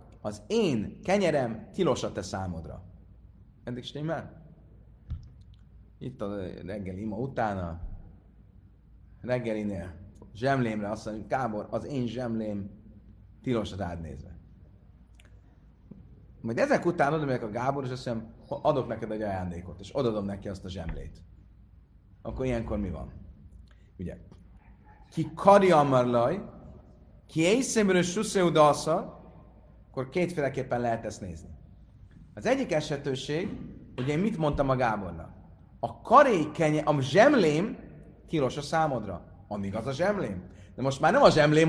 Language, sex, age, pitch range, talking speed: Hungarian, male, 30-49, 100-160 Hz, 125 wpm